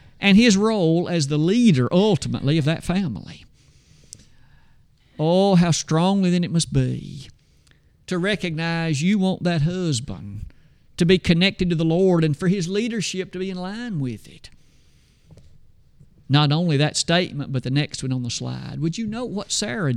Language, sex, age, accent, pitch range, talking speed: English, male, 50-69, American, 145-190 Hz, 165 wpm